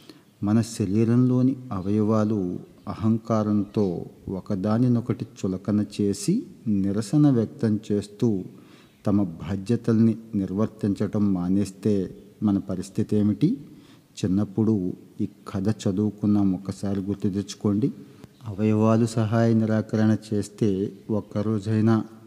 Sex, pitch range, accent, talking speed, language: male, 100-115 Hz, native, 80 wpm, Telugu